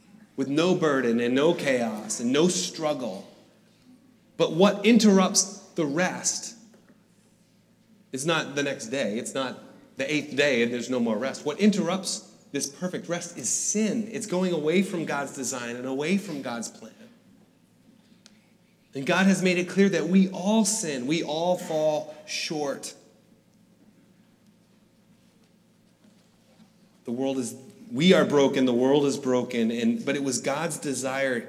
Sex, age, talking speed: male, 30-49, 145 wpm